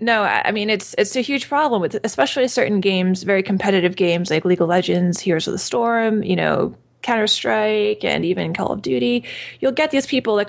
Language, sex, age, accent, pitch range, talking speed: English, female, 20-39, American, 185-230 Hz, 205 wpm